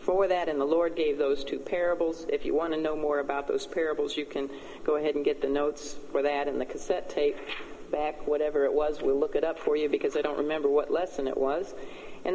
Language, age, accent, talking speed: English, 50-69, American, 250 wpm